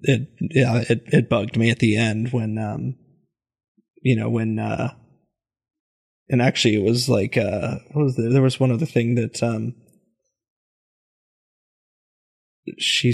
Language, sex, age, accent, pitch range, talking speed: English, male, 20-39, American, 115-135 Hz, 145 wpm